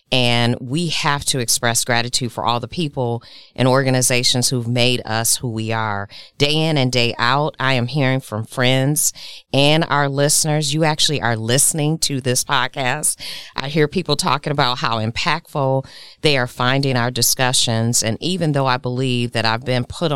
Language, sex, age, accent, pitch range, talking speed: English, female, 40-59, American, 115-145 Hz, 175 wpm